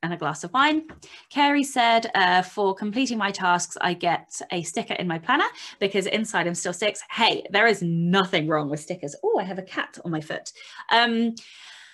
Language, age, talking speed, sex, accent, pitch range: English, 20-39, 195 wpm, female, British, 170-225 Hz